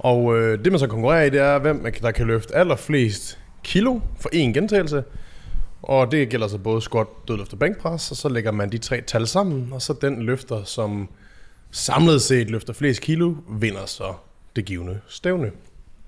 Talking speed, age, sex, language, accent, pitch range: 185 wpm, 20-39, male, Danish, native, 105-140 Hz